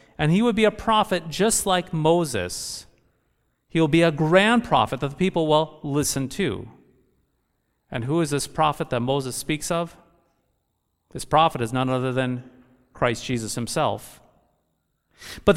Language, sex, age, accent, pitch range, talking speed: English, male, 40-59, American, 135-170 Hz, 150 wpm